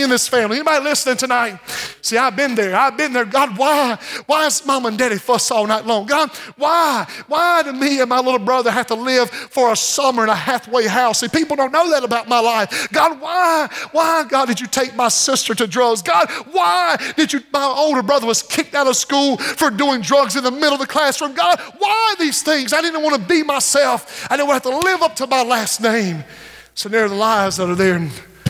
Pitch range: 175-270 Hz